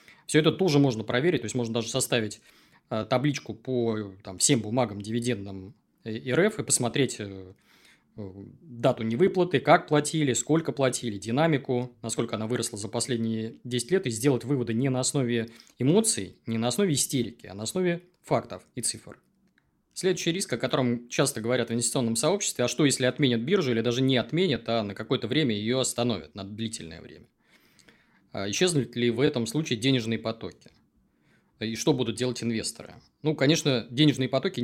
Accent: native